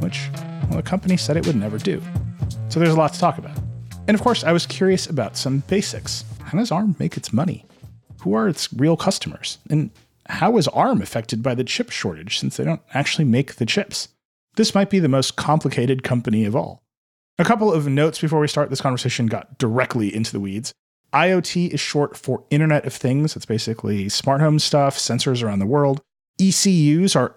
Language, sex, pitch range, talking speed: English, male, 115-150 Hz, 205 wpm